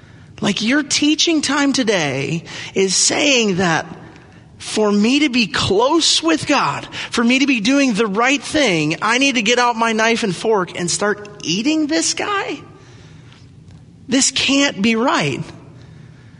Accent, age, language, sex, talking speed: American, 30-49, English, male, 150 wpm